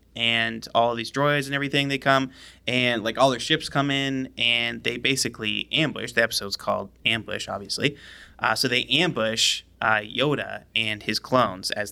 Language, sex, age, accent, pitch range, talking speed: English, male, 20-39, American, 110-135 Hz, 170 wpm